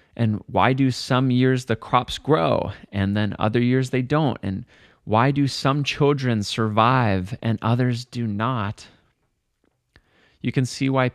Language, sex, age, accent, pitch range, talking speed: English, male, 30-49, American, 105-130 Hz, 150 wpm